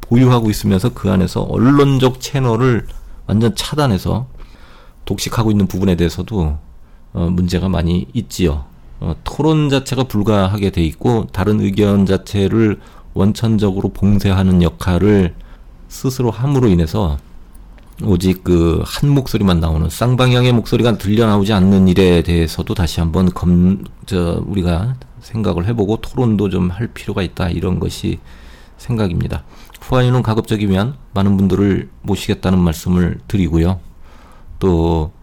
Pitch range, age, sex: 85-110 Hz, 40-59, male